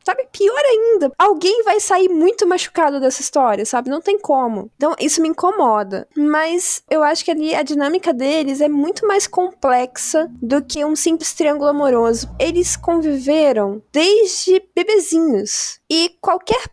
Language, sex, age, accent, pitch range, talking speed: Portuguese, female, 20-39, Brazilian, 245-325 Hz, 150 wpm